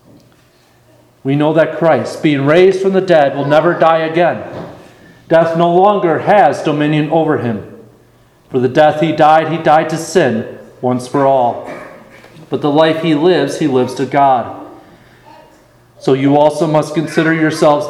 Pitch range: 140-190 Hz